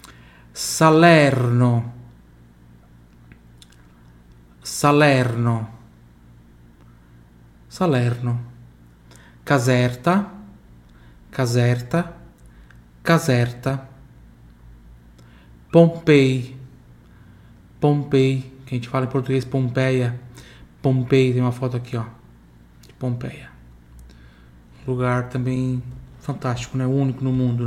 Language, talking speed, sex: Italian, 65 wpm, male